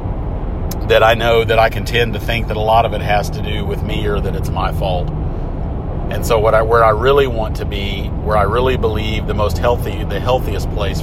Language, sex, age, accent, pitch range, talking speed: English, male, 40-59, American, 90-115 Hz, 240 wpm